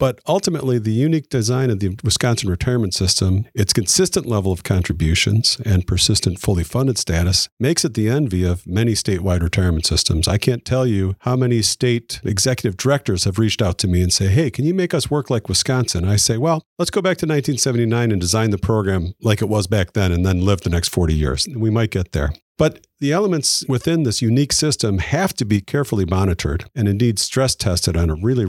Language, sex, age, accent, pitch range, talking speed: English, male, 50-69, American, 95-130 Hz, 210 wpm